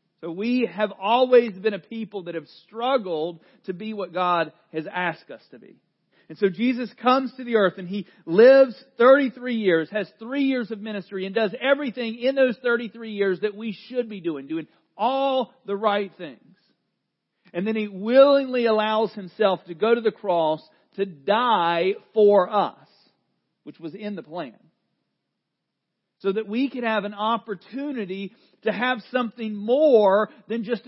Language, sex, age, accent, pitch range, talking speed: English, male, 40-59, American, 175-230 Hz, 165 wpm